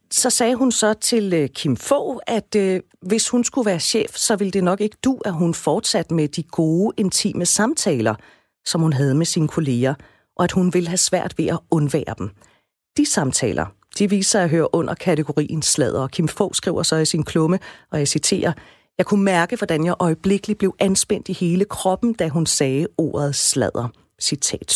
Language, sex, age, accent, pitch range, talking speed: Danish, female, 40-59, native, 155-205 Hz, 195 wpm